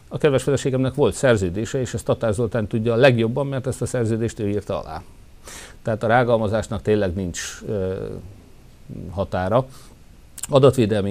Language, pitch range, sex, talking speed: Hungarian, 100-125 Hz, male, 140 wpm